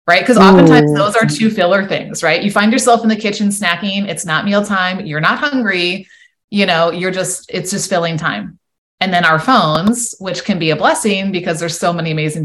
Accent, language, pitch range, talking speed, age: American, English, 160-210 Hz, 215 wpm, 20-39